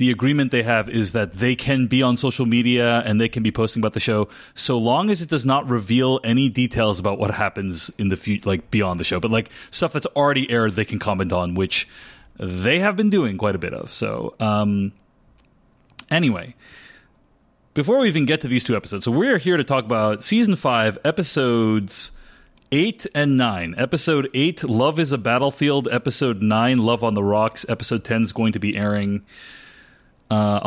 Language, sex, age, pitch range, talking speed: English, male, 30-49, 105-140 Hz, 200 wpm